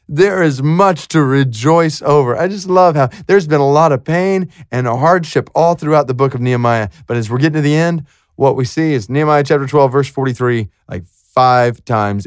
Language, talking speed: English, 215 wpm